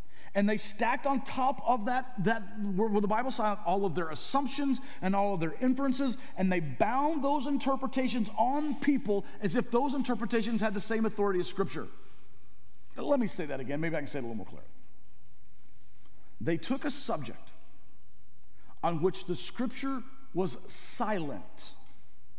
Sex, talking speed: male, 170 wpm